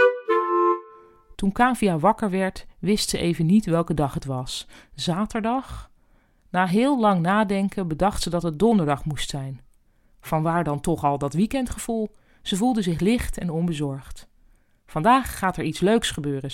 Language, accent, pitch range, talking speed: Dutch, Dutch, 160-205 Hz, 155 wpm